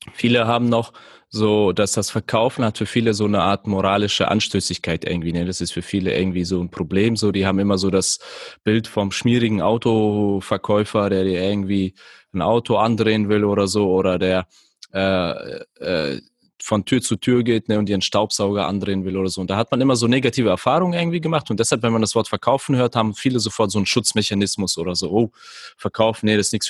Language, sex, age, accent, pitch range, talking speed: German, male, 20-39, German, 100-120 Hz, 205 wpm